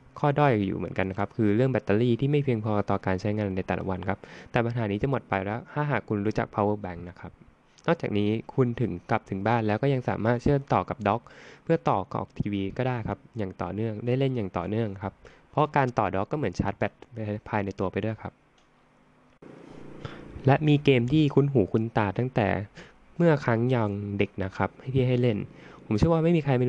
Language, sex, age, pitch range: Thai, male, 20-39, 105-135 Hz